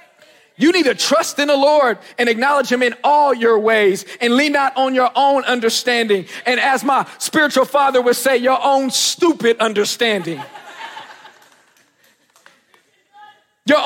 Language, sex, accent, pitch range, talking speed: English, male, American, 250-325 Hz, 145 wpm